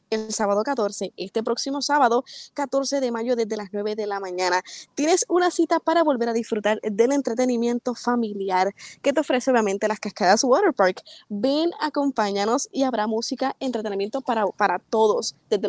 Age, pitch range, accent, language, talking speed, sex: 20-39, 215-270 Hz, American, Spanish, 165 wpm, female